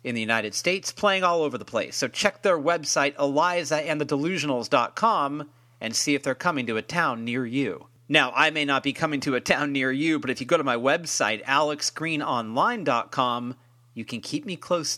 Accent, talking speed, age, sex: American, 195 wpm, 40-59, male